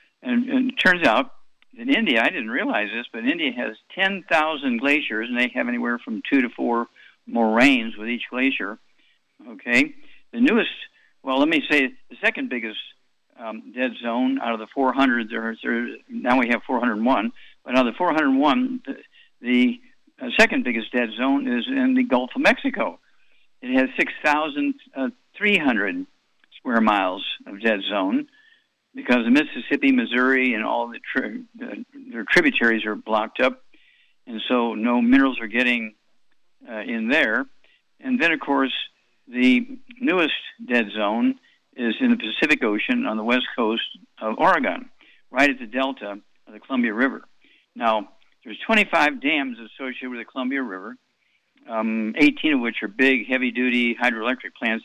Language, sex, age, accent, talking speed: English, male, 60-79, American, 160 wpm